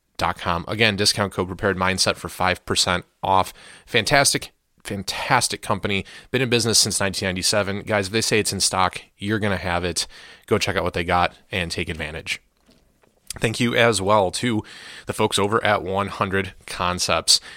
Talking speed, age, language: 170 wpm, 30-49, English